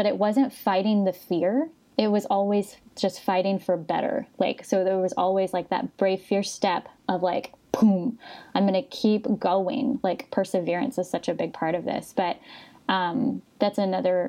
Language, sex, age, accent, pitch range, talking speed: English, female, 10-29, American, 180-235 Hz, 185 wpm